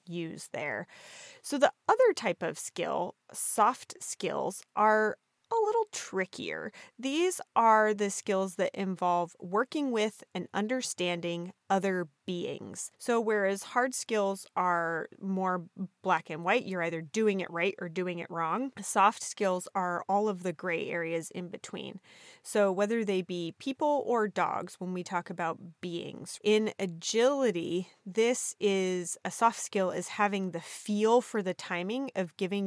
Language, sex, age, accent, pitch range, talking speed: English, female, 30-49, American, 175-215 Hz, 150 wpm